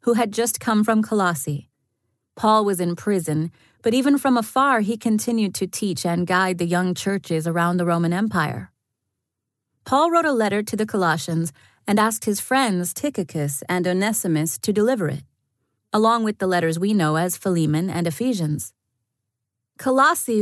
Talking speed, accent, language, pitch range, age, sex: 160 wpm, American, English, 165-220 Hz, 30-49, female